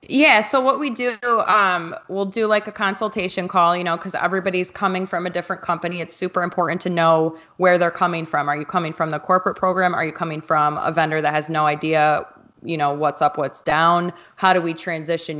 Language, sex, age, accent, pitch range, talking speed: English, female, 20-39, American, 160-180 Hz, 220 wpm